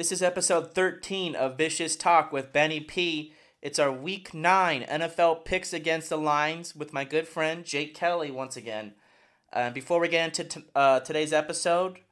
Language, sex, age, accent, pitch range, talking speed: English, male, 30-49, American, 115-150 Hz, 175 wpm